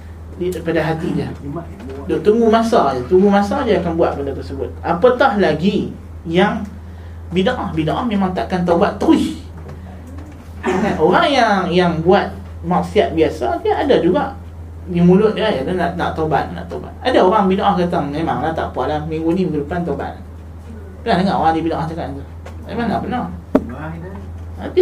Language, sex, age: Malay, male, 20-39